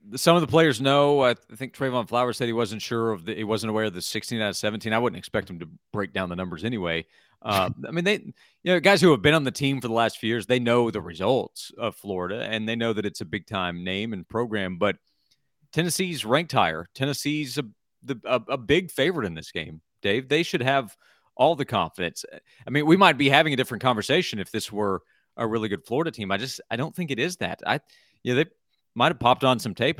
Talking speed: 250 wpm